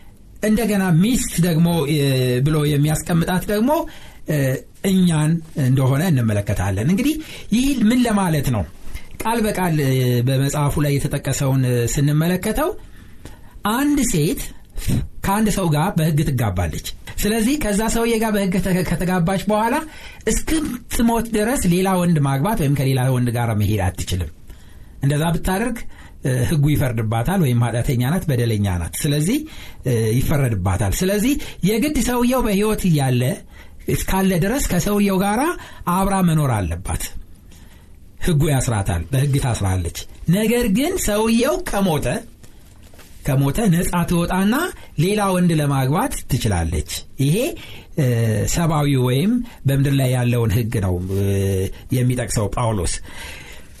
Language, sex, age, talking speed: Amharic, male, 60-79, 100 wpm